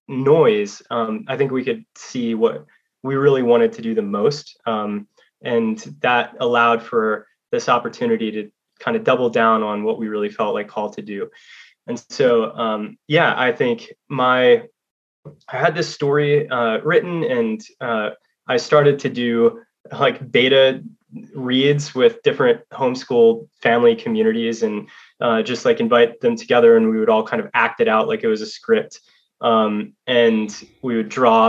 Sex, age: male, 20-39